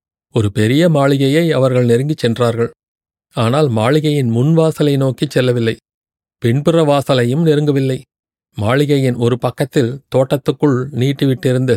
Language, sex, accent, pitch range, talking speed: Tamil, male, native, 120-145 Hz, 95 wpm